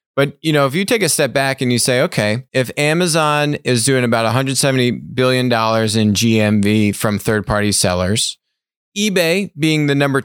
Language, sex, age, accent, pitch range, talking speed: English, male, 30-49, American, 110-145 Hz, 175 wpm